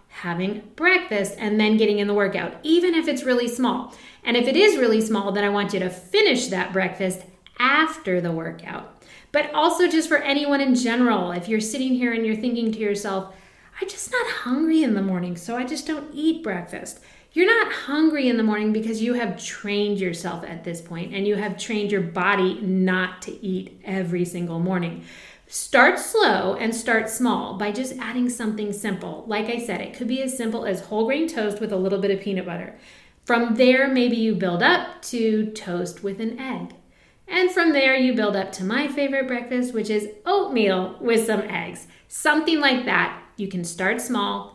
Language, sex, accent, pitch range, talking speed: English, female, American, 190-255 Hz, 200 wpm